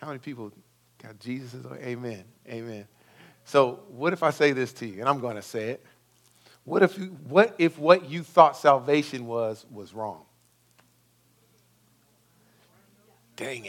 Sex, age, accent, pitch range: male, 50-69, American, 105-145 Hz